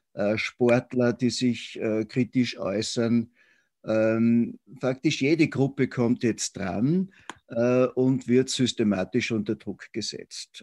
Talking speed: 115 wpm